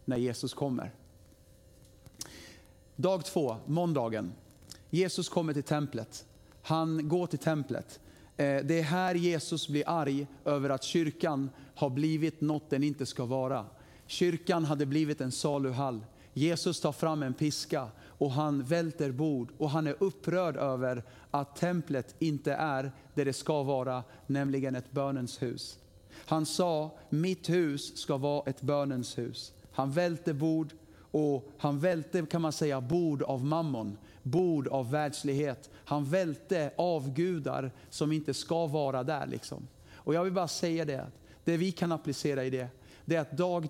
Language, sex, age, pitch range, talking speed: Swedish, male, 40-59, 130-160 Hz, 150 wpm